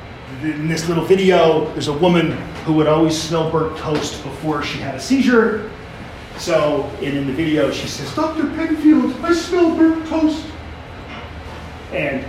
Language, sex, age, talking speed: English, male, 30-49, 155 wpm